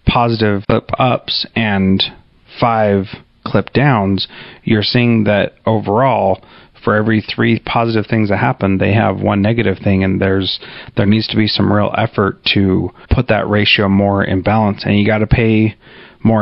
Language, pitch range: English, 100-115 Hz